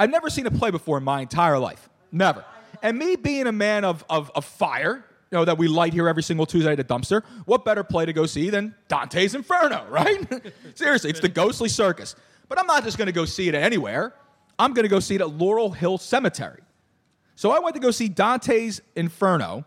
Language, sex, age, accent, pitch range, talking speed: English, male, 30-49, American, 135-200 Hz, 230 wpm